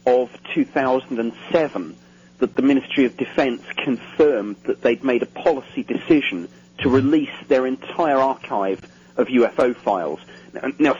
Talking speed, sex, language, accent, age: 125 wpm, male, English, British, 40-59